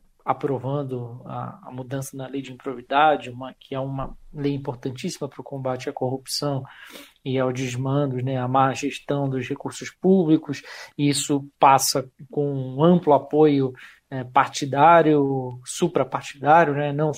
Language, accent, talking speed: Portuguese, Brazilian, 135 wpm